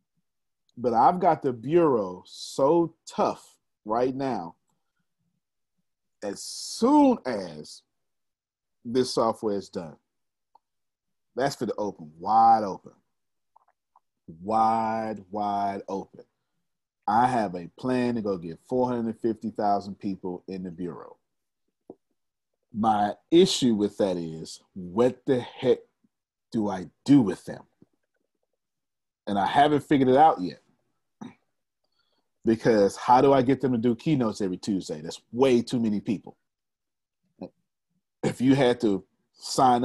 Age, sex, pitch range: 40-59, male, 105-135 Hz